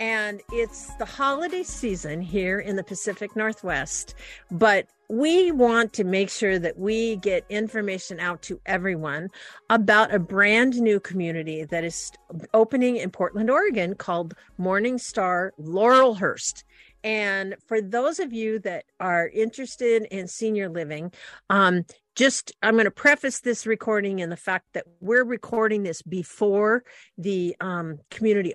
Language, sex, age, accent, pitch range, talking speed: English, female, 50-69, American, 190-240 Hz, 135 wpm